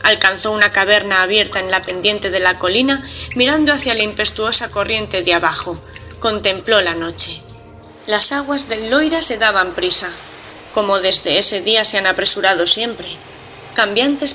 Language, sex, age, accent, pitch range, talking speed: Spanish, female, 20-39, Spanish, 185-250 Hz, 150 wpm